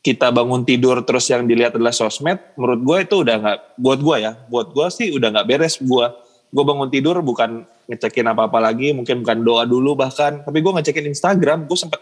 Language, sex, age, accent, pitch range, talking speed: Indonesian, male, 20-39, native, 115-145 Hz, 205 wpm